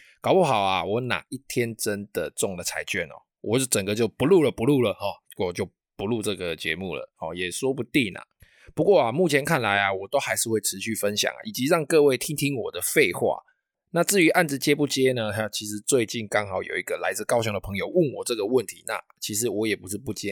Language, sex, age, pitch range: Chinese, male, 20-39, 100-140 Hz